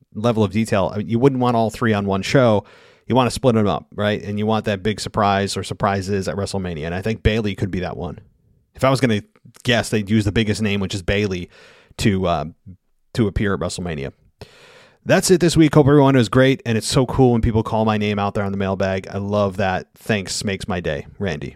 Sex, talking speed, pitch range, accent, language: male, 240 wpm, 100-125 Hz, American, English